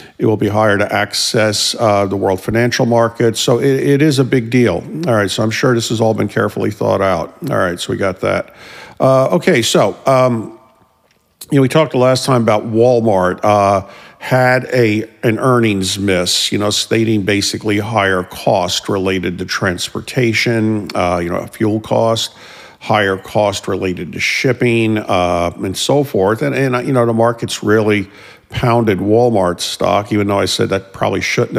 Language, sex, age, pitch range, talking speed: English, male, 50-69, 95-120 Hz, 180 wpm